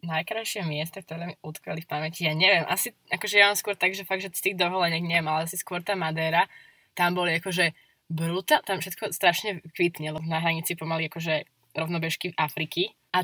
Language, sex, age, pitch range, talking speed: Slovak, female, 20-39, 160-190 Hz, 190 wpm